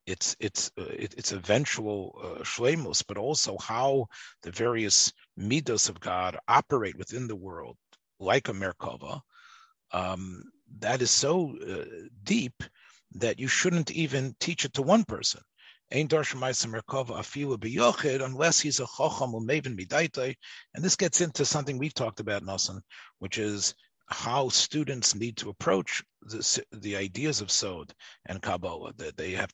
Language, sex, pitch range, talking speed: English, male, 105-145 Hz, 150 wpm